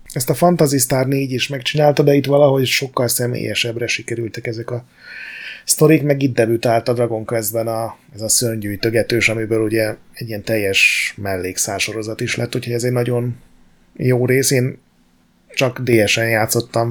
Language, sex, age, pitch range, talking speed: Hungarian, male, 30-49, 110-130 Hz, 155 wpm